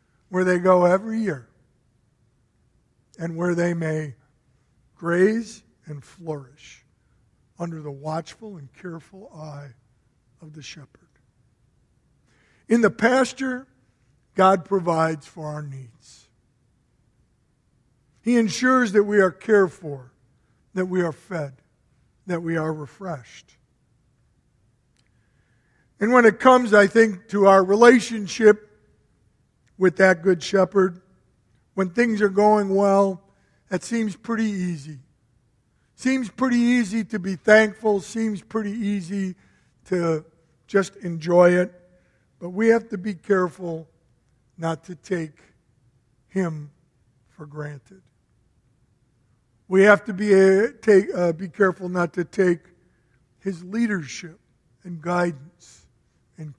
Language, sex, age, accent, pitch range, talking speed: English, male, 50-69, American, 135-200 Hz, 110 wpm